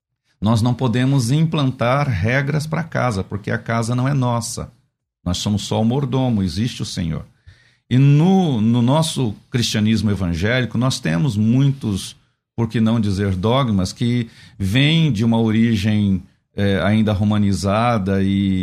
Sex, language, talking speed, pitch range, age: male, Portuguese, 140 wpm, 105-135 Hz, 50-69